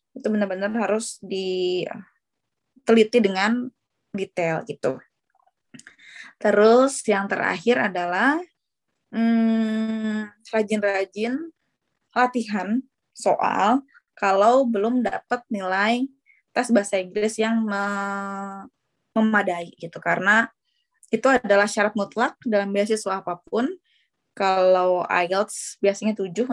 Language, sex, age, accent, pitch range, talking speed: Indonesian, female, 20-39, native, 195-245 Hz, 85 wpm